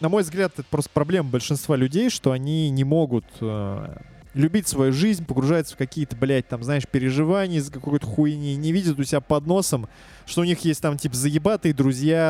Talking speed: 195 wpm